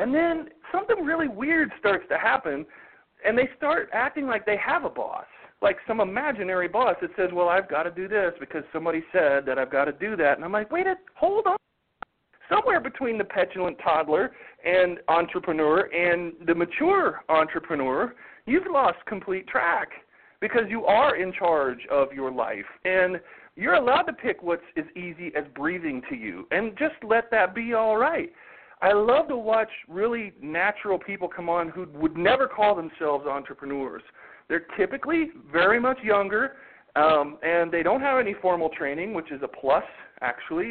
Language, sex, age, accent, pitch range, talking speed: English, male, 40-59, American, 165-255 Hz, 175 wpm